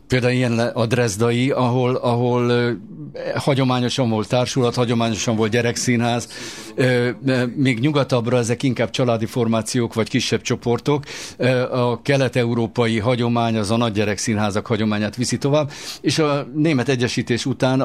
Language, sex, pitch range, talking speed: Hungarian, male, 110-135 Hz, 120 wpm